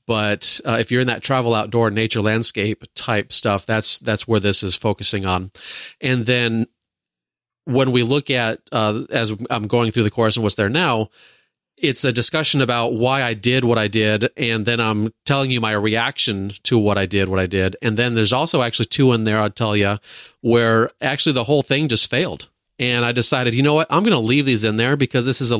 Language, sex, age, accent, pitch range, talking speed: English, male, 30-49, American, 110-130 Hz, 225 wpm